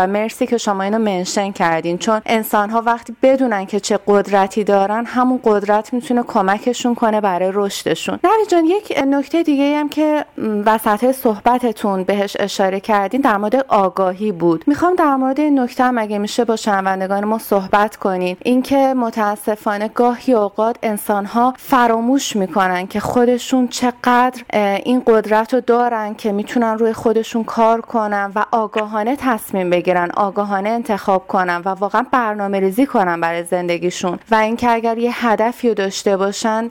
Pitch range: 195-235 Hz